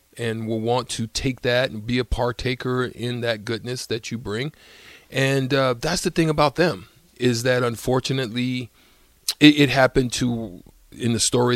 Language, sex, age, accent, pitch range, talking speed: English, male, 40-59, American, 110-130 Hz, 170 wpm